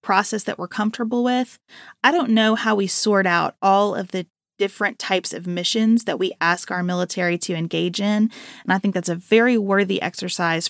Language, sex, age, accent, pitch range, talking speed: English, female, 20-39, American, 175-215 Hz, 195 wpm